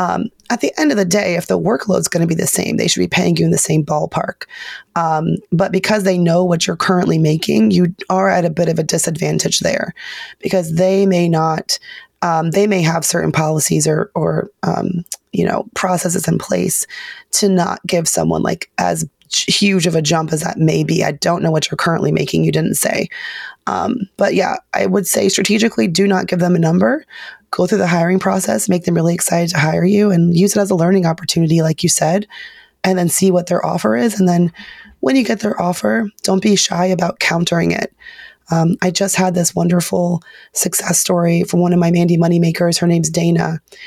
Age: 30-49